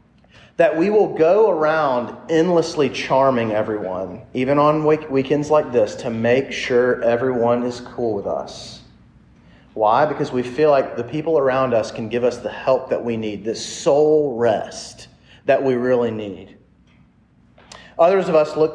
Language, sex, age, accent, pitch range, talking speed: English, male, 30-49, American, 120-150 Hz, 155 wpm